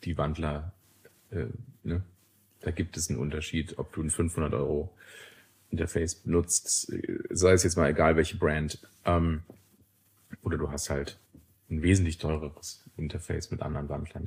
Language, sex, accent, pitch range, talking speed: German, male, German, 85-105 Hz, 145 wpm